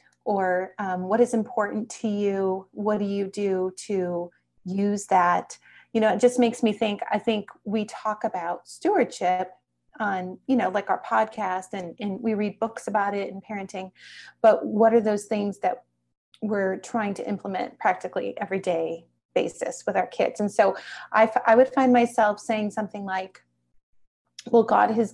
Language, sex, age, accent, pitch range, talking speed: English, female, 30-49, American, 190-225 Hz, 170 wpm